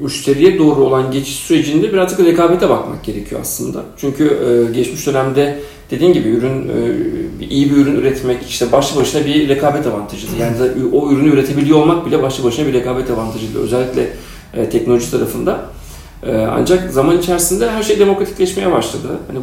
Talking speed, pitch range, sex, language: 150 wpm, 125-170 Hz, male, Turkish